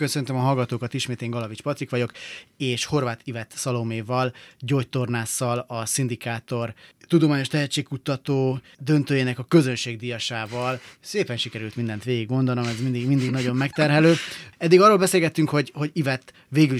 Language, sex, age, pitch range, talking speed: Hungarian, male, 30-49, 115-135 Hz, 130 wpm